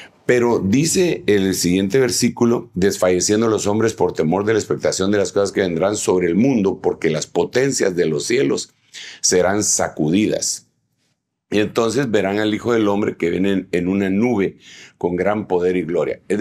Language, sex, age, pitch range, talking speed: Spanish, male, 50-69, 100-120 Hz, 170 wpm